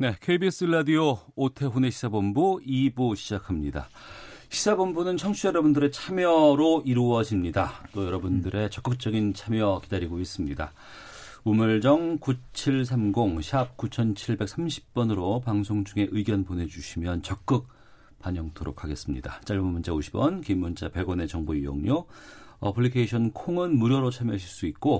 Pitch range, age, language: 95-135 Hz, 40-59, Korean